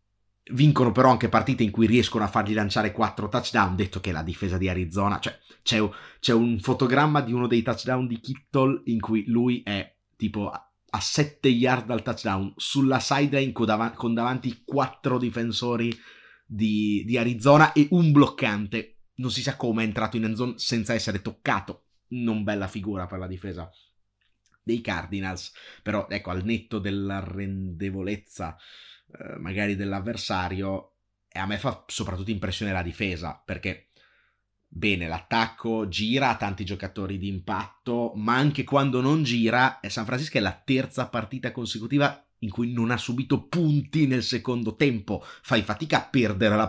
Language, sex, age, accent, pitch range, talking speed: Italian, male, 30-49, native, 100-125 Hz, 160 wpm